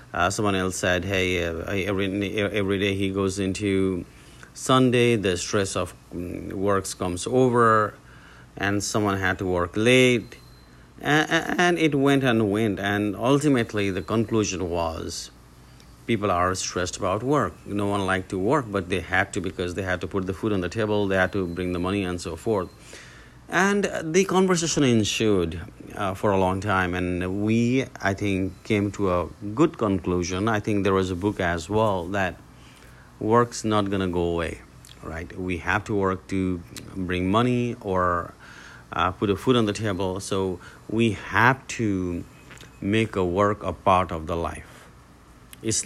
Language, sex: English, male